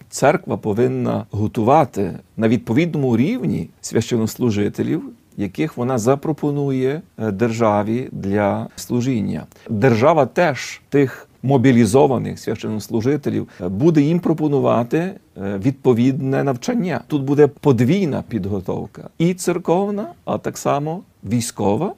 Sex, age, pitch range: male, 40-59, 115-155 Hz